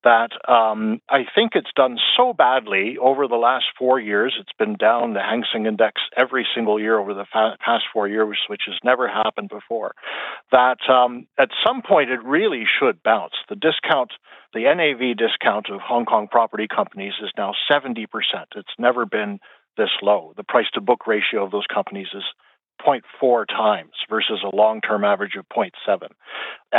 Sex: male